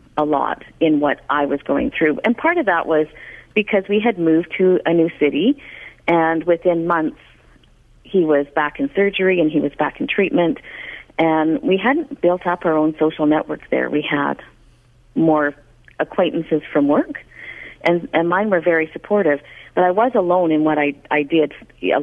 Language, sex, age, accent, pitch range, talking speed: English, female, 50-69, American, 155-200 Hz, 185 wpm